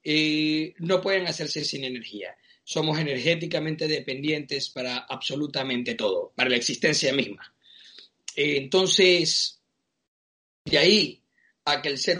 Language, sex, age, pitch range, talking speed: Spanish, male, 40-59, 140-185 Hz, 120 wpm